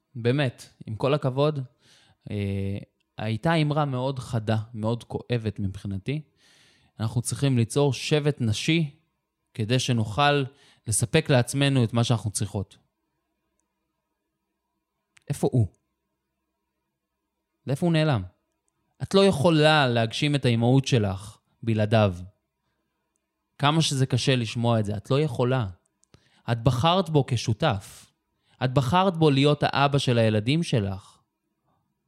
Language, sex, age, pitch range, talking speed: Hebrew, male, 20-39, 115-150 Hz, 110 wpm